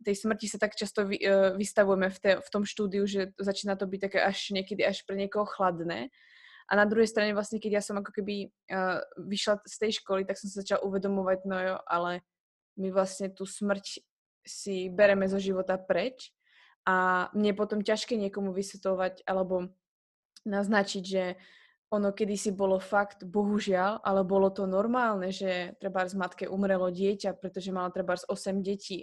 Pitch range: 190-205 Hz